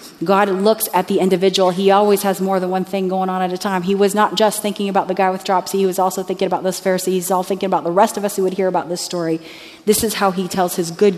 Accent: American